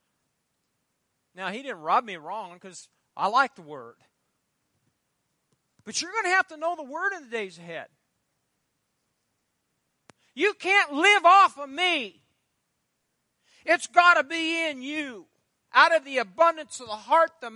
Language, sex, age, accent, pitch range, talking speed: English, male, 40-59, American, 255-350 Hz, 150 wpm